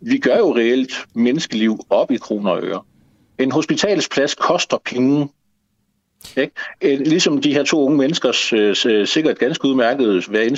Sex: male